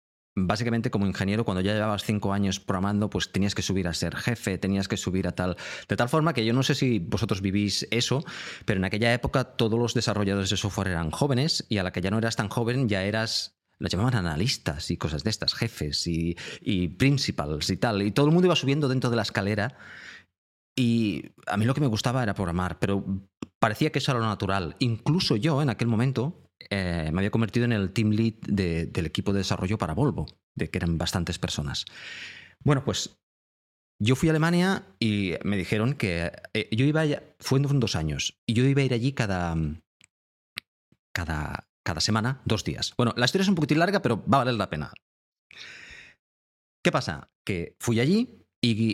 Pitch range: 95-125 Hz